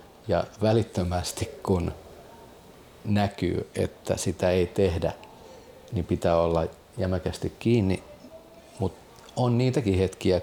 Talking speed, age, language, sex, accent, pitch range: 100 wpm, 40-59, Finnish, male, native, 90-105 Hz